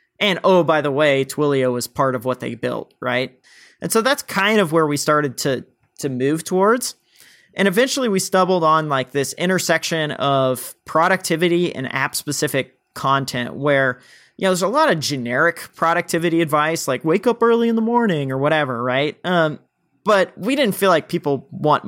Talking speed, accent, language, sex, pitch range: 185 wpm, American, English, male, 140-180 Hz